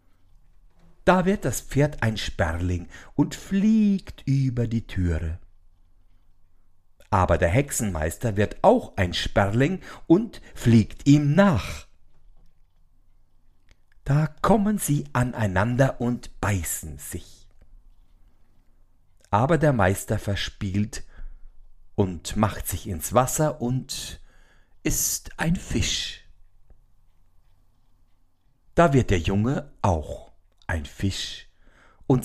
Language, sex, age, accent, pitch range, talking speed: German, male, 60-79, German, 85-125 Hz, 95 wpm